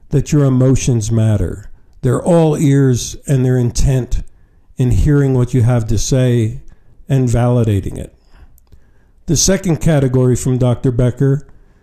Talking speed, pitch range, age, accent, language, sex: 130 wpm, 120-160 Hz, 50-69, American, English, male